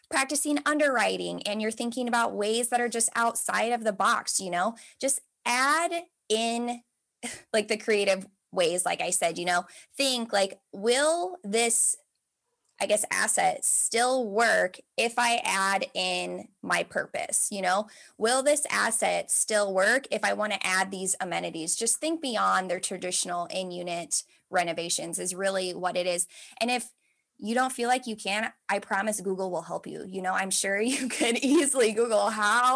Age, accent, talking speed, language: 20-39, American, 170 wpm, English